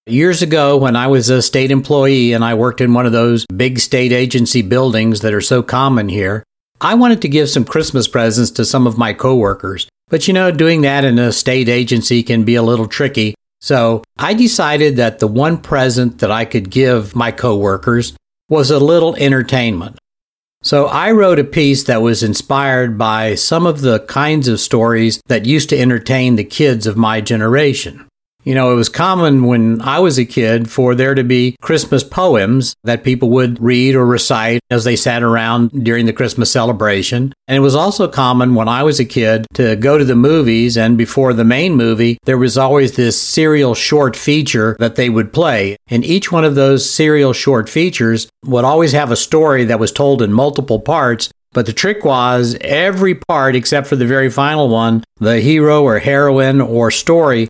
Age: 50-69